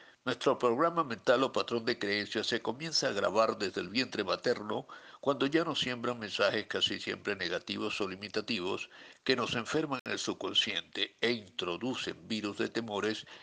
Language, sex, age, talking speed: Spanish, male, 60-79, 160 wpm